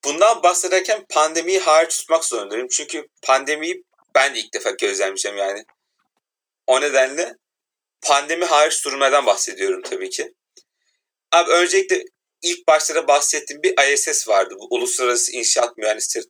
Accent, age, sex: native, 40-59, male